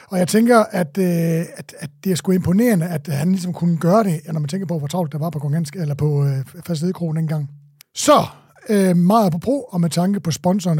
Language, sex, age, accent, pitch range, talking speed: Danish, male, 60-79, native, 160-210 Hz, 230 wpm